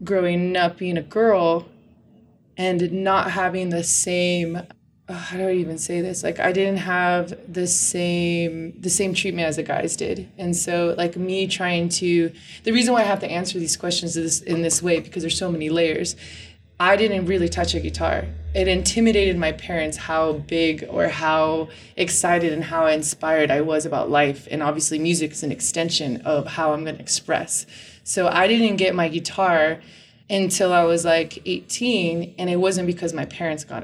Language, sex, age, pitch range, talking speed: English, female, 20-39, 160-185 Hz, 190 wpm